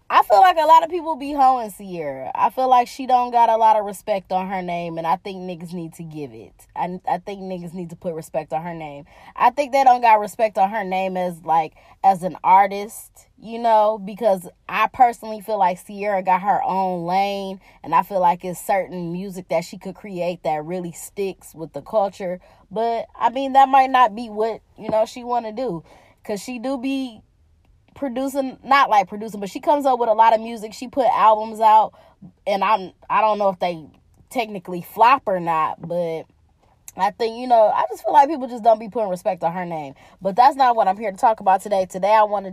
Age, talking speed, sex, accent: 20-39, 230 wpm, female, American